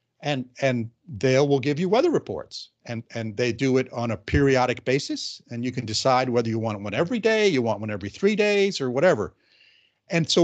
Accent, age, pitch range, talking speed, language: American, 50-69, 115-155 Hz, 220 wpm, English